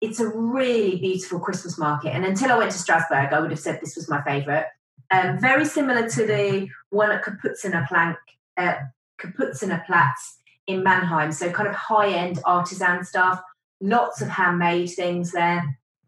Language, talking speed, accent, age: English, 165 wpm, British, 30-49